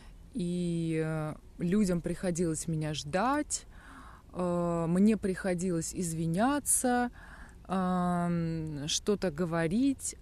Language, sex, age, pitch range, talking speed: Russian, female, 20-39, 155-205 Hz, 60 wpm